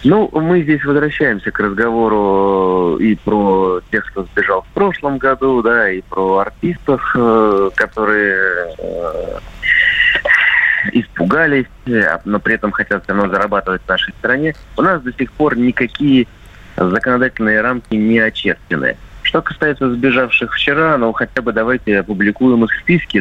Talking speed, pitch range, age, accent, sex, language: 130 wpm, 95-125 Hz, 30-49, native, male, Russian